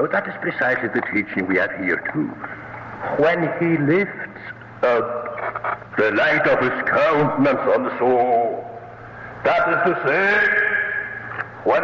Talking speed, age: 130 wpm, 60-79